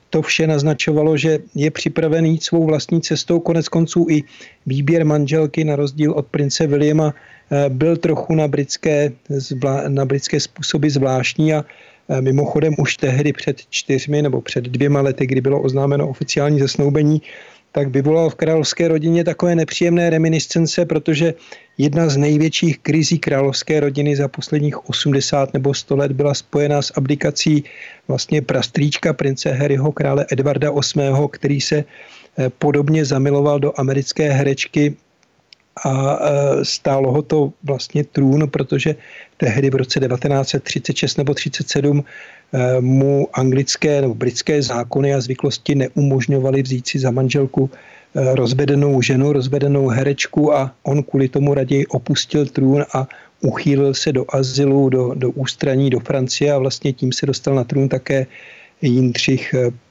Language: Czech